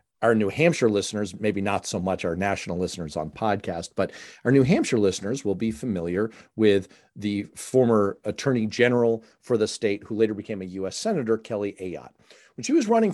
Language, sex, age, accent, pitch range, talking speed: English, male, 40-59, American, 105-150 Hz, 185 wpm